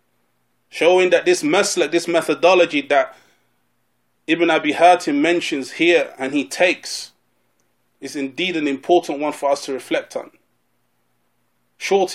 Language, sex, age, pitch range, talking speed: English, male, 20-39, 140-190 Hz, 130 wpm